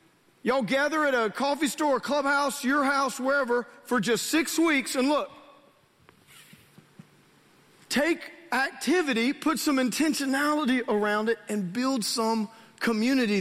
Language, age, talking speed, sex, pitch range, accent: English, 40-59, 120 wpm, male, 185-270 Hz, American